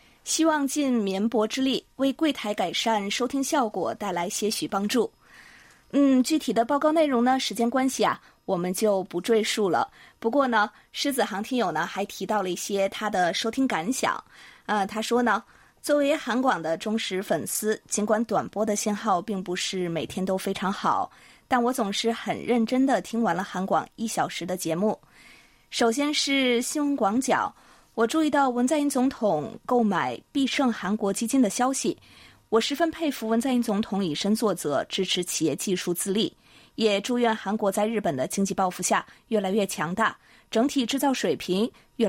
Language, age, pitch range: Chinese, 20-39, 195-255 Hz